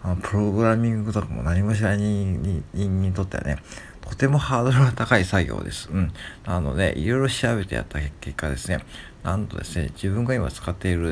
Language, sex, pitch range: Japanese, male, 85-110 Hz